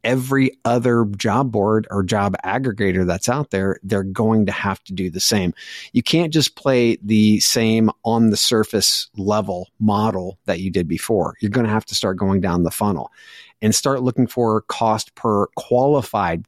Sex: male